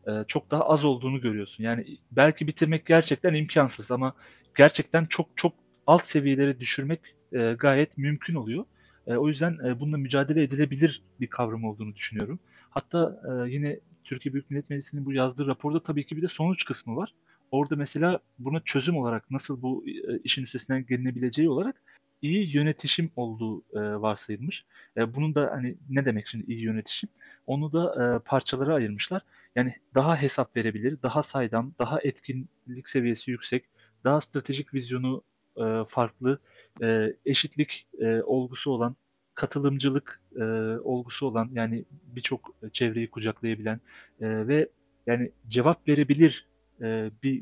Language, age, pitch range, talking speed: Turkish, 40-59, 120-150 Hz, 130 wpm